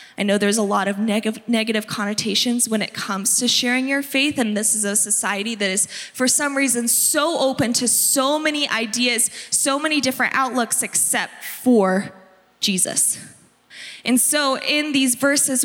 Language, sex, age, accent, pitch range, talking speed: English, female, 20-39, American, 205-255 Hz, 165 wpm